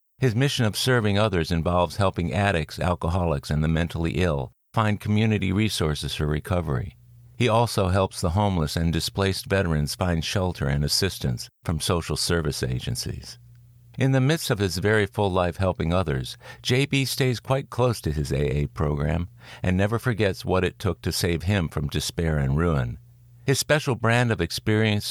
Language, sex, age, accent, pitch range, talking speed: English, male, 50-69, American, 80-110 Hz, 165 wpm